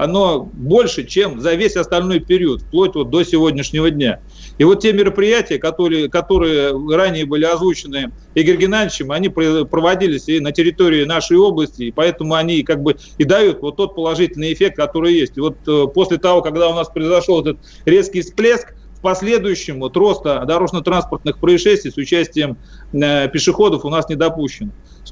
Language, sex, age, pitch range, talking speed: Russian, male, 40-59, 150-185 Hz, 165 wpm